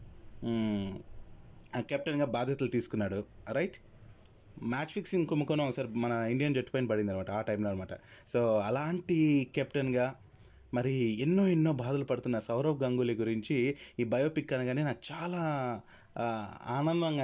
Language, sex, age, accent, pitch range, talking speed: Telugu, male, 30-49, native, 115-160 Hz, 120 wpm